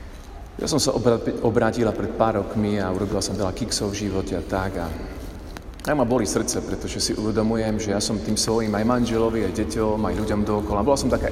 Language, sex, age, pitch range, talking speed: Slovak, male, 40-59, 95-120 Hz, 215 wpm